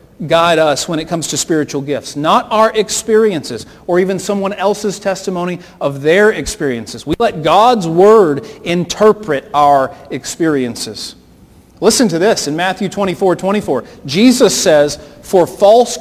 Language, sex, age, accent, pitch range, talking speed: English, male, 40-59, American, 150-215 Hz, 140 wpm